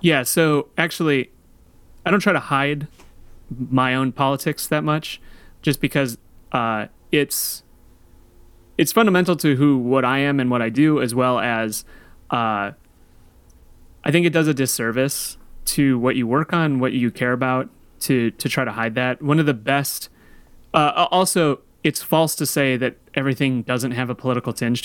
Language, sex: English, male